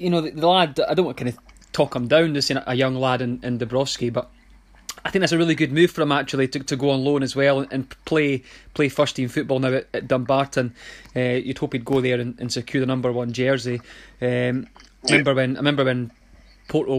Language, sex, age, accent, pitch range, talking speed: English, male, 20-39, British, 130-155 Hz, 245 wpm